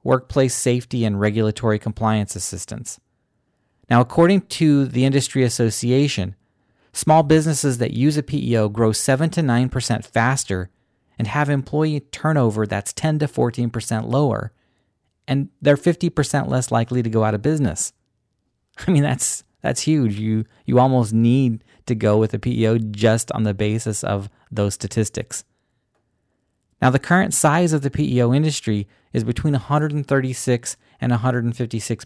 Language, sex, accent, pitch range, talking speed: English, male, American, 110-140 Hz, 140 wpm